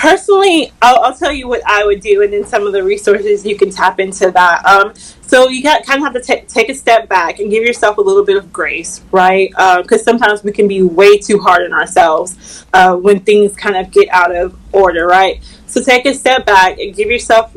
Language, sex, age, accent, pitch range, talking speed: English, female, 20-39, American, 195-235 Hz, 245 wpm